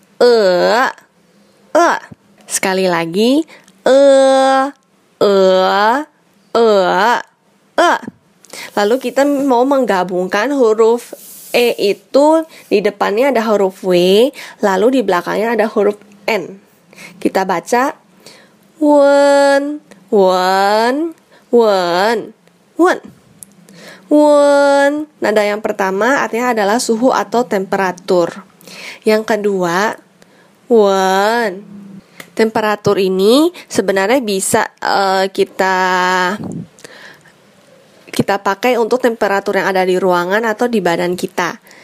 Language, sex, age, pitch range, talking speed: Indonesian, female, 20-39, 190-240 Hz, 90 wpm